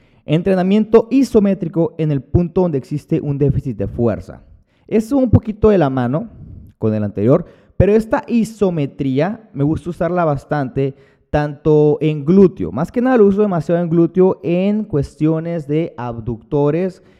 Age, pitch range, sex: 30-49, 120-175 Hz, male